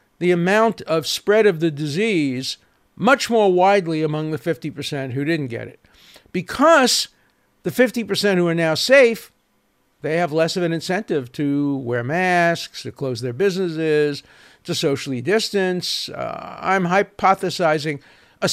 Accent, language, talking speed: American, English, 145 wpm